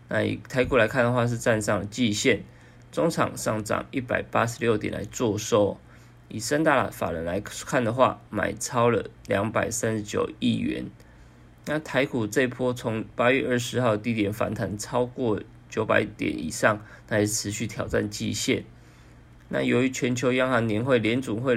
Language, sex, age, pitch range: Chinese, male, 20-39, 105-125 Hz